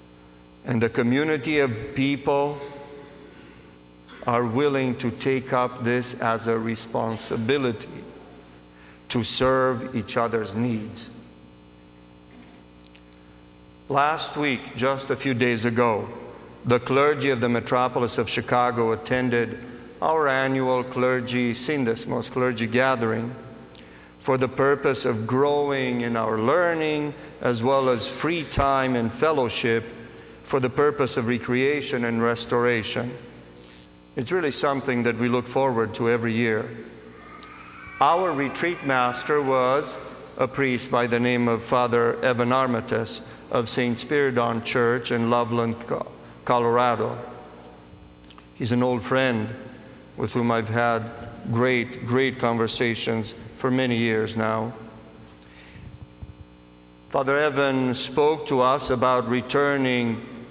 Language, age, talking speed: English, 50-69, 115 wpm